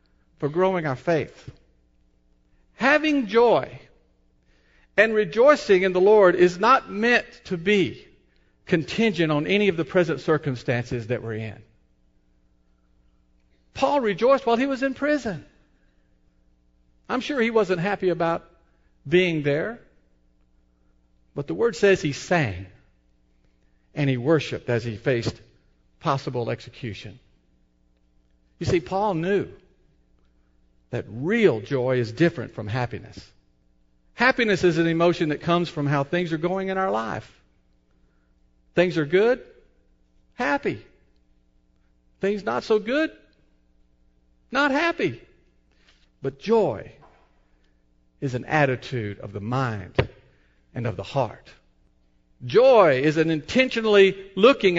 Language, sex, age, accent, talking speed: English, male, 50-69, American, 115 wpm